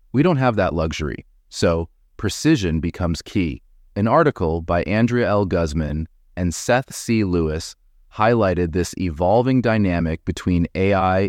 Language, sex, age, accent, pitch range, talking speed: English, male, 30-49, American, 85-110 Hz, 135 wpm